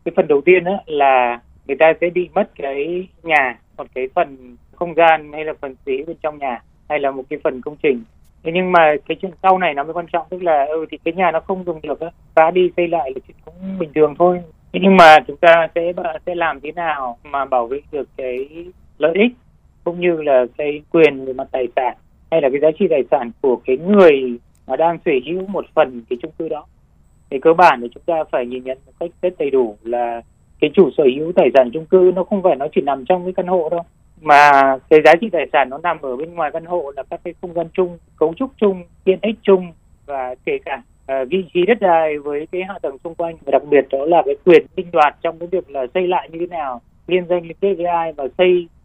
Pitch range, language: 145-180 Hz, Vietnamese